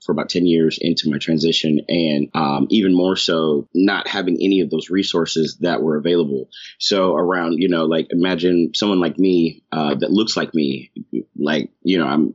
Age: 30-49